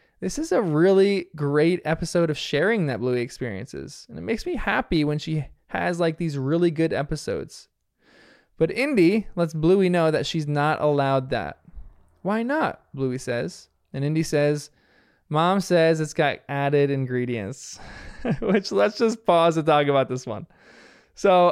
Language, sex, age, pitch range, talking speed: English, male, 20-39, 135-175 Hz, 160 wpm